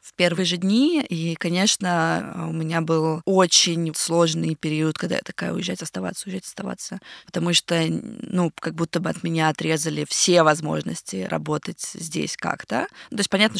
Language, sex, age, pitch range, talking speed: Russian, female, 20-39, 160-190 Hz, 170 wpm